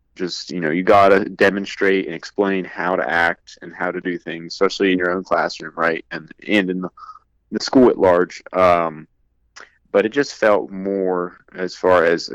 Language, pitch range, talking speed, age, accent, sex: English, 90-95 Hz, 195 wpm, 30-49, American, male